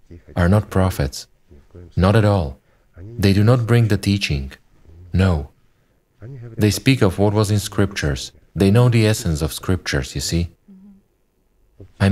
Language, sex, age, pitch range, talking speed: English, male, 40-59, 85-110 Hz, 145 wpm